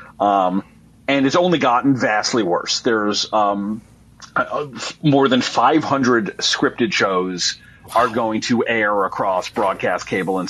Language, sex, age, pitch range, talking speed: English, male, 40-59, 110-145 Hz, 130 wpm